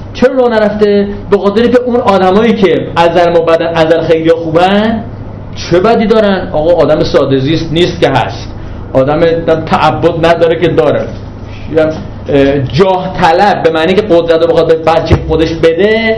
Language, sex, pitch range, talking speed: Persian, male, 140-215 Hz, 150 wpm